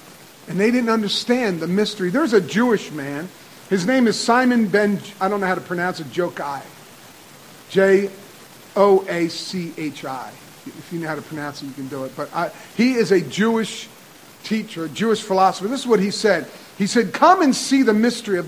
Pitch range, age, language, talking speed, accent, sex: 170-240 Hz, 50-69, English, 185 wpm, American, male